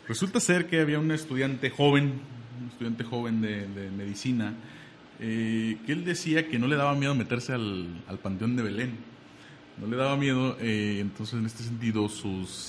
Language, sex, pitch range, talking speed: Spanish, male, 100-140 Hz, 180 wpm